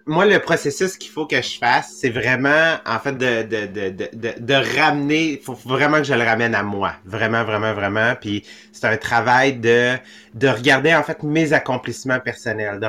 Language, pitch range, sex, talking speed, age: English, 115-145 Hz, male, 195 wpm, 30-49